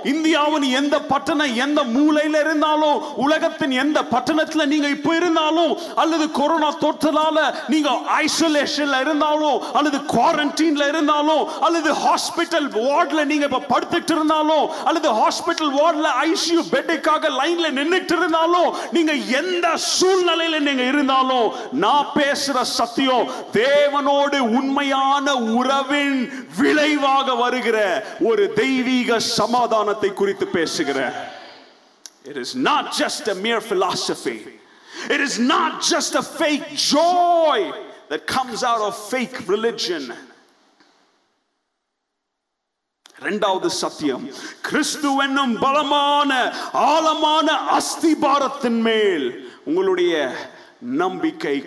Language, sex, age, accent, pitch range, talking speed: Tamil, male, 40-59, native, 275-325 Hz, 60 wpm